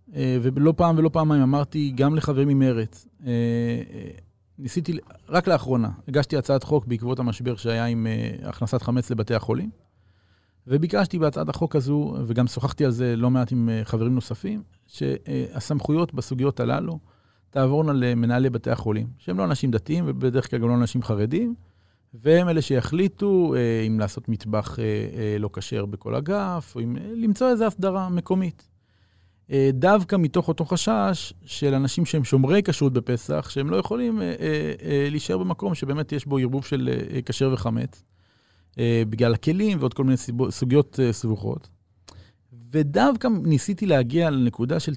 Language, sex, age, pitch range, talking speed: Hebrew, male, 40-59, 110-155 Hz, 145 wpm